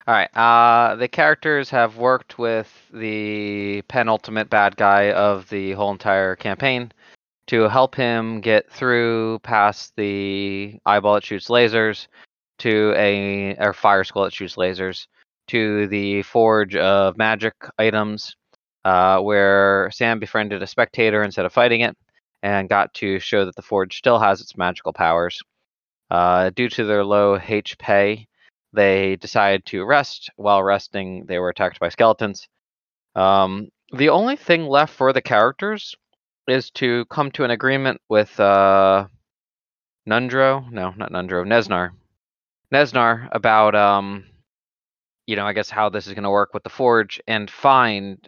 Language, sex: English, male